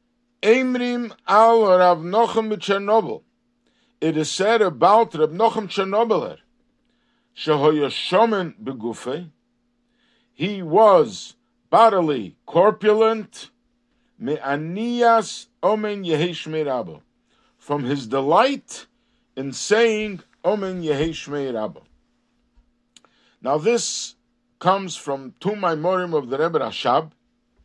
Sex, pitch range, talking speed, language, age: male, 150-230 Hz, 85 wpm, English, 60-79